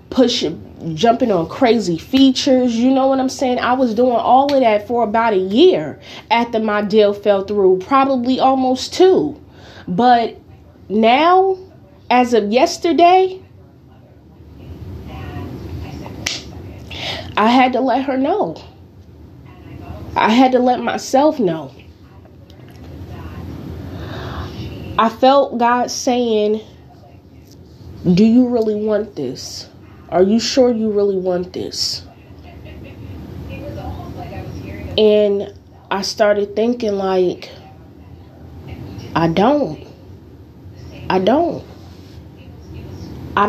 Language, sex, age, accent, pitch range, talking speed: English, female, 20-39, American, 190-260 Hz, 100 wpm